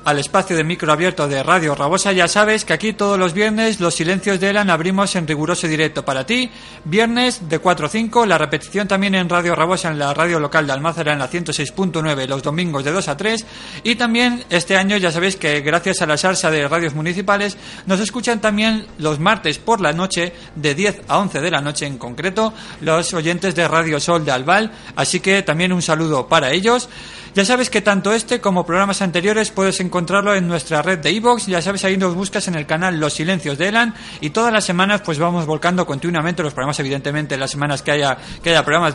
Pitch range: 160-205 Hz